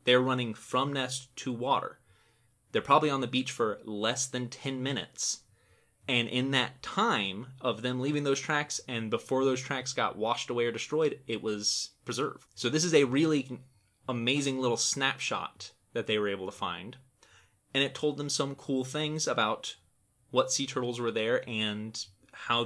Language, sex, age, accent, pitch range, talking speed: English, male, 30-49, American, 110-135 Hz, 175 wpm